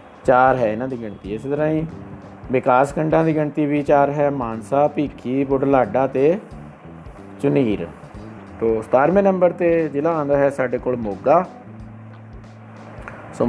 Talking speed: 140 wpm